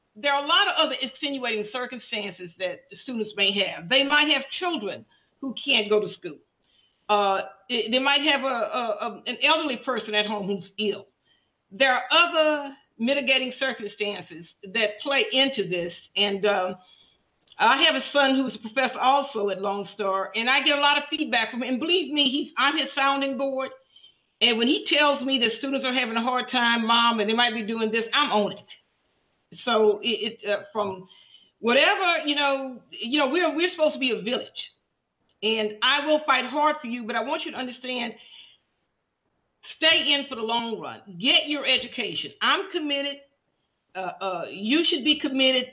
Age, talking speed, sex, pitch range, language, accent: 50-69, 180 wpm, female, 215-285 Hz, English, American